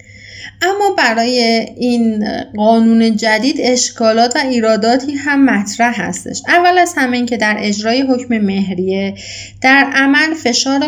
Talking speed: 120 wpm